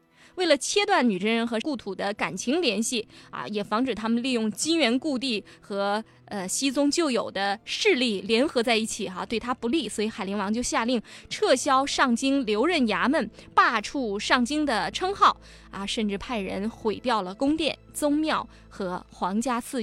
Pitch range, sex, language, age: 215-300 Hz, female, Chinese, 20-39